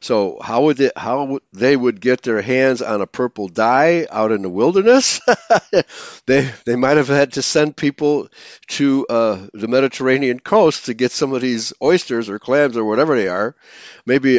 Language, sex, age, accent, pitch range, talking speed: English, male, 60-79, American, 115-140 Hz, 190 wpm